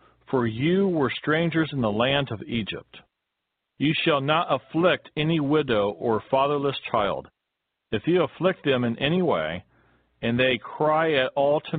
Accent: American